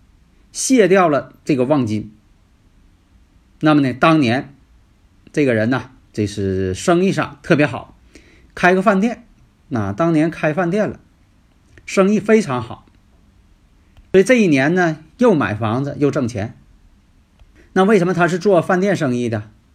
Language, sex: Chinese, male